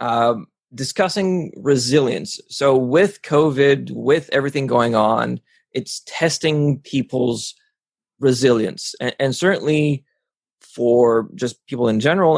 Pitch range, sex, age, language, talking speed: 120-145 Hz, male, 20-39, English, 105 wpm